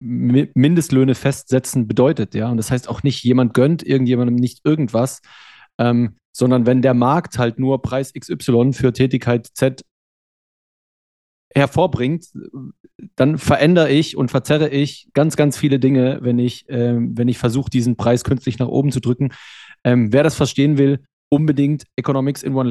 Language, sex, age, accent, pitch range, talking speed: German, male, 30-49, German, 125-140 Hz, 150 wpm